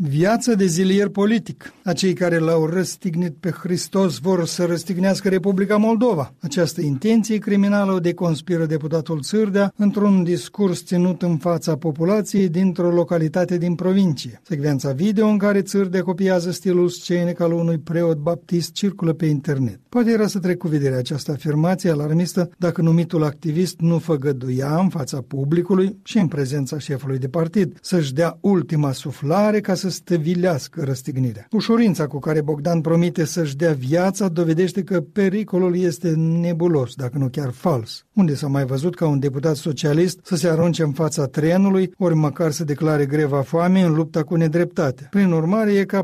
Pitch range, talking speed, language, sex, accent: 155-185 Hz, 160 wpm, Romanian, male, native